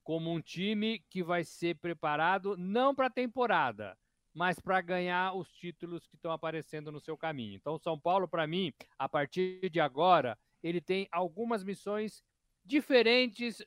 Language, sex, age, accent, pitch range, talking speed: Portuguese, male, 50-69, Brazilian, 145-180 Hz, 165 wpm